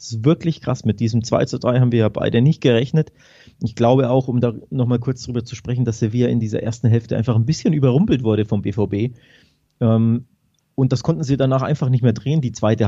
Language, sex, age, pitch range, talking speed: German, male, 30-49, 110-130 Hz, 235 wpm